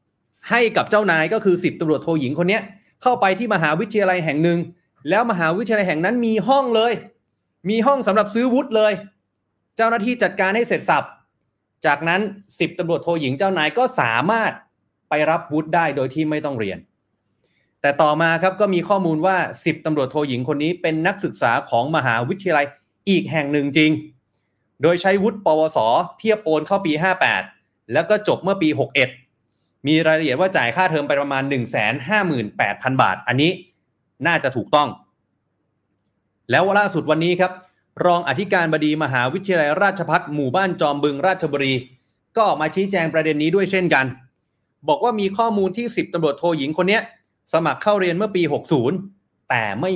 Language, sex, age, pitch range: Thai, male, 30-49, 145-200 Hz